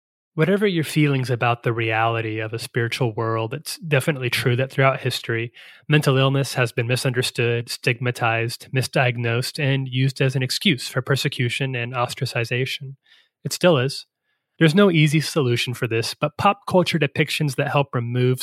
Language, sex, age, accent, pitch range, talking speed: English, male, 30-49, American, 125-155 Hz, 155 wpm